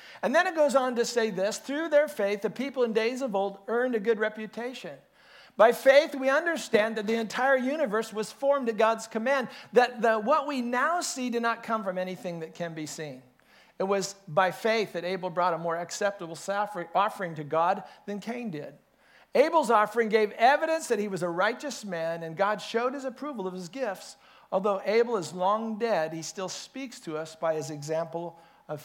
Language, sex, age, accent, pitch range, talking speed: English, male, 50-69, American, 185-245 Hz, 200 wpm